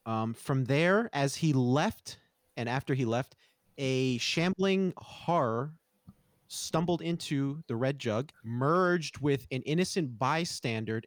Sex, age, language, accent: male, 30-49, English, American